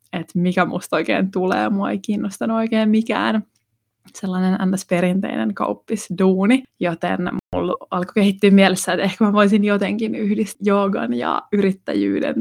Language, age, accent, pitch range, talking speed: Finnish, 20-39, native, 175-210 Hz, 135 wpm